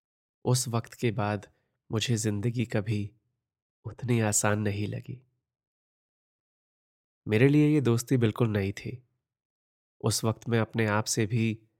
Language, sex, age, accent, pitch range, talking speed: Hindi, male, 20-39, native, 105-120 Hz, 125 wpm